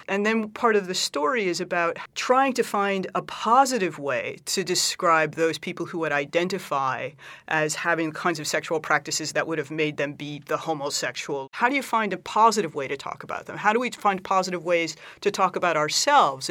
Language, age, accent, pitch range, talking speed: English, 30-49, American, 150-185 Hz, 205 wpm